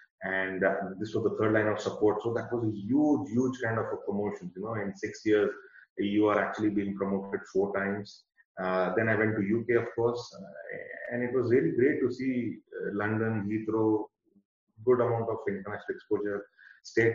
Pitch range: 100-115 Hz